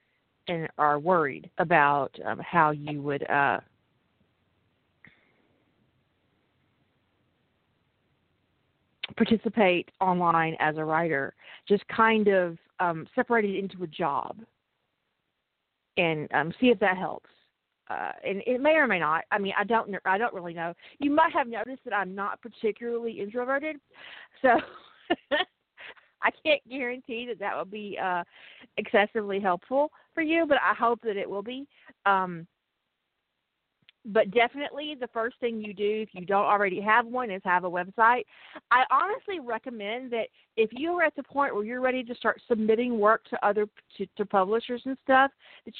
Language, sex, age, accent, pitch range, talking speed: English, female, 40-59, American, 190-250 Hz, 150 wpm